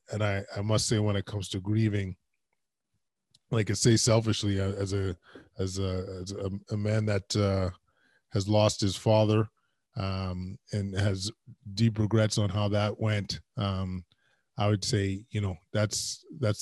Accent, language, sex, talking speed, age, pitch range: American, English, male, 165 wpm, 20-39, 100-110 Hz